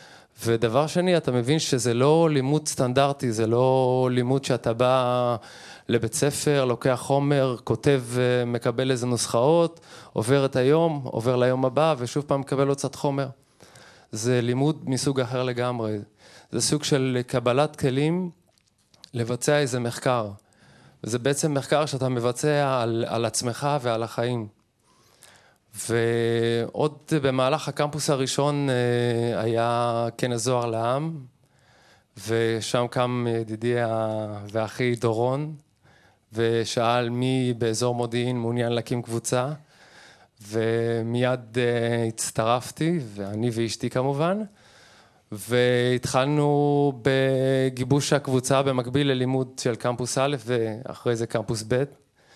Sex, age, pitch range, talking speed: male, 20-39, 115-140 Hz, 105 wpm